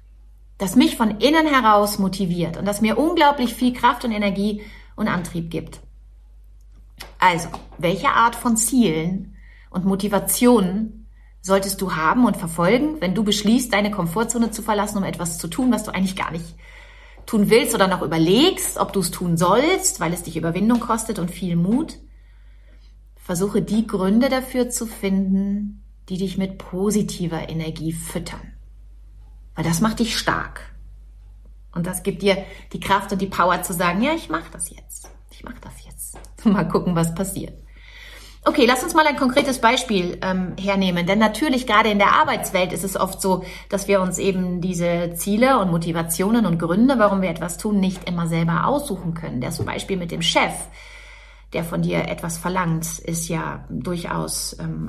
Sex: female